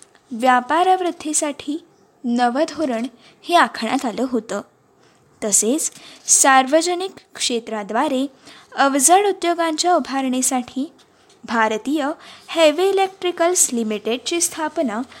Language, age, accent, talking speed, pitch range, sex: Marathi, 20-39, native, 70 wpm, 255-335 Hz, female